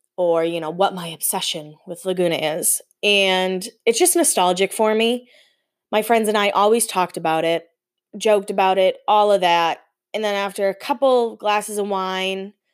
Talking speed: 175 wpm